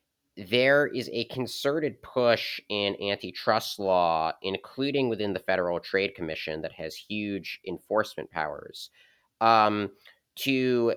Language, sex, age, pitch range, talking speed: English, male, 30-49, 90-120 Hz, 115 wpm